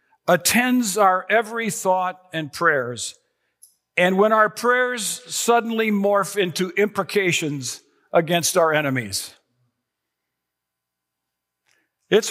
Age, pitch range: 50-69, 150-220 Hz